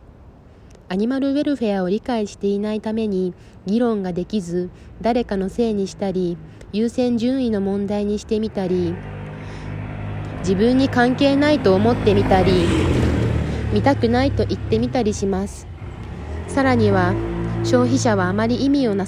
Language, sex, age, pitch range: Japanese, female, 20-39, 170-230 Hz